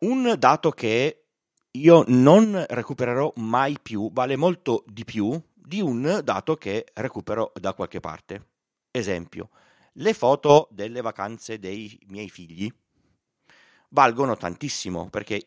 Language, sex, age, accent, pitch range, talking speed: Italian, male, 30-49, native, 100-155 Hz, 120 wpm